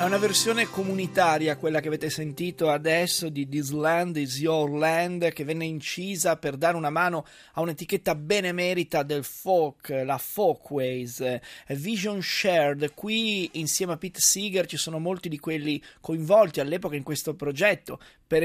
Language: Italian